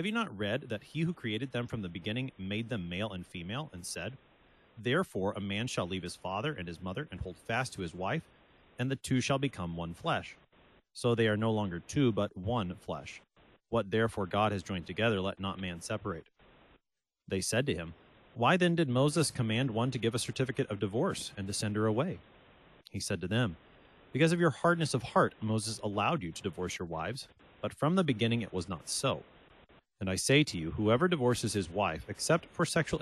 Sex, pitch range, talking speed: male, 95-130 Hz, 215 wpm